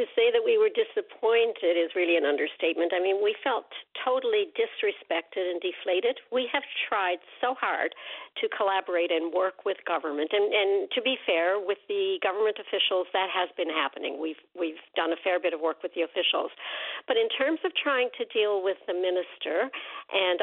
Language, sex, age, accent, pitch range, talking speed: English, female, 60-79, American, 180-280 Hz, 190 wpm